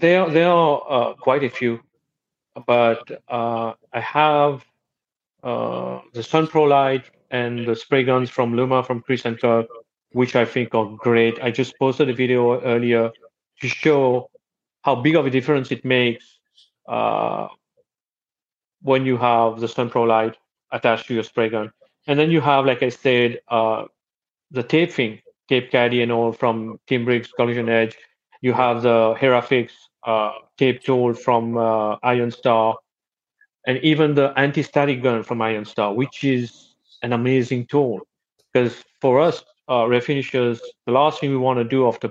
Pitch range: 115-135 Hz